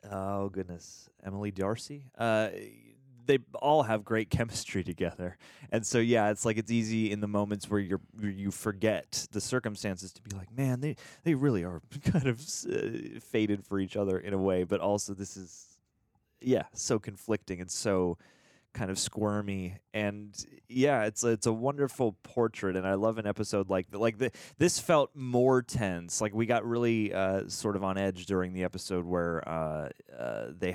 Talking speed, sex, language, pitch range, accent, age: 185 wpm, male, English, 90-110 Hz, American, 20-39